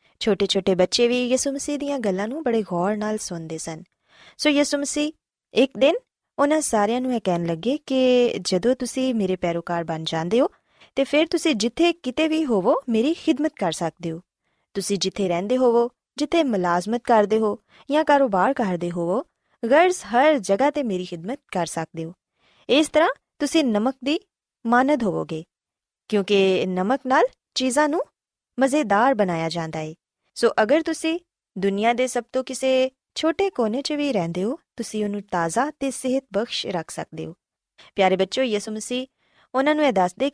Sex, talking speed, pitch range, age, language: female, 150 wpm, 190-275 Hz, 20-39, Punjabi